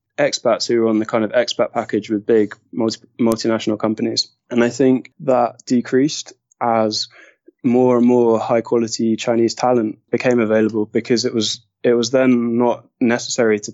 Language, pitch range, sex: English, 110-120 Hz, male